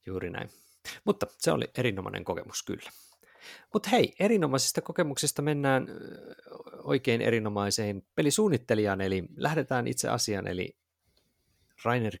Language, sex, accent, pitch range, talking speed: Finnish, male, native, 95-135 Hz, 110 wpm